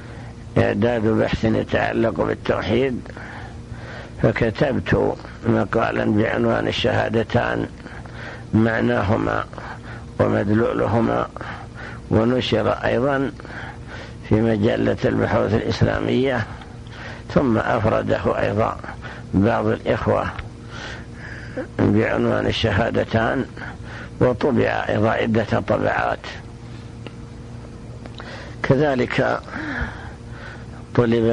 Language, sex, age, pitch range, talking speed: Arabic, male, 60-79, 110-120 Hz, 55 wpm